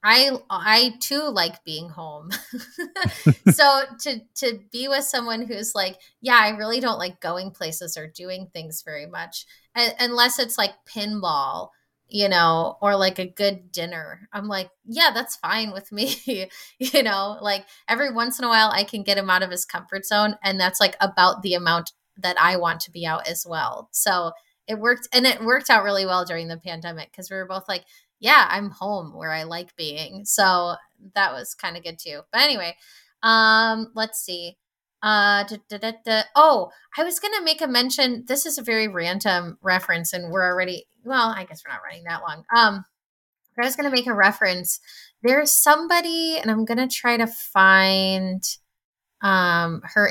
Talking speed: 185 wpm